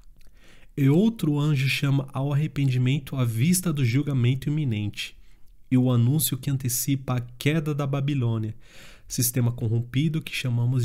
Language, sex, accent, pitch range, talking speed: Portuguese, male, Brazilian, 115-140 Hz, 135 wpm